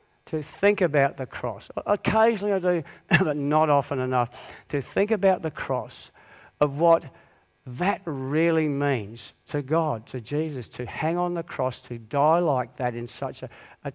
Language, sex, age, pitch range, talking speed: English, male, 50-69, 130-165 Hz, 170 wpm